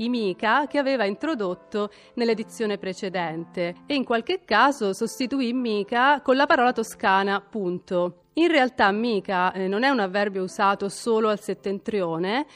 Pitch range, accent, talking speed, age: 190-245 Hz, native, 135 wpm, 40-59